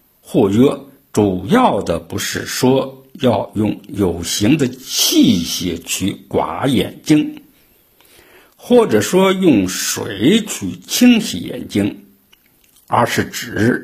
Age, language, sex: 60-79, Chinese, male